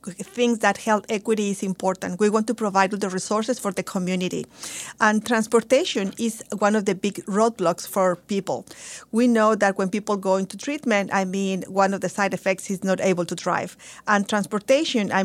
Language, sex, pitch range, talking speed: English, female, 190-230 Hz, 190 wpm